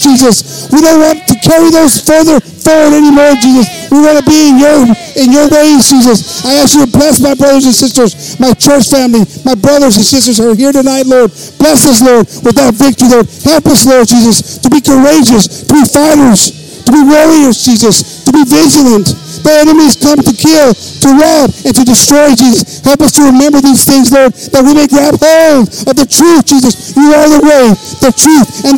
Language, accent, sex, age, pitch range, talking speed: English, American, male, 50-69, 255-305 Hz, 210 wpm